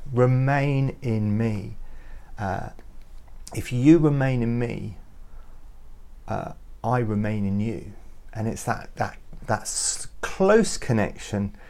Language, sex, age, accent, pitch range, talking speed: English, male, 40-59, British, 105-160 Hz, 110 wpm